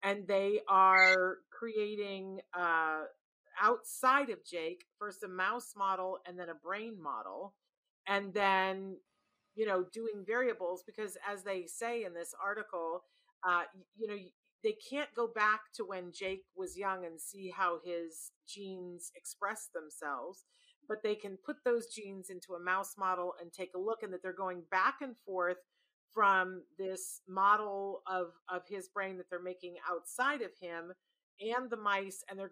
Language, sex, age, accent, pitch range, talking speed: English, female, 40-59, American, 185-225 Hz, 160 wpm